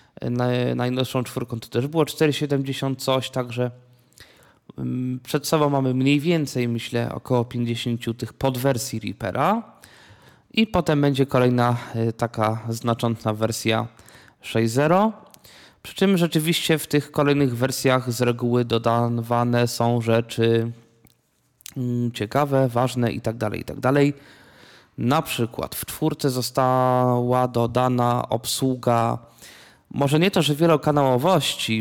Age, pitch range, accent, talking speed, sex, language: 20-39, 115-140 Hz, native, 105 wpm, male, Polish